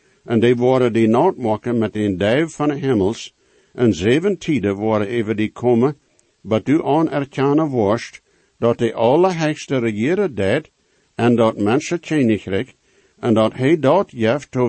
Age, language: 60-79, English